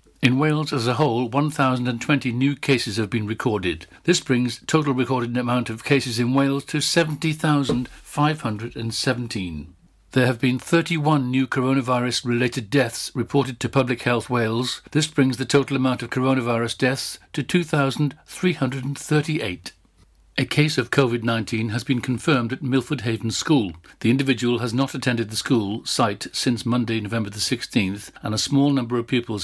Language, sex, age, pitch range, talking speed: English, male, 60-79, 110-135 Hz, 150 wpm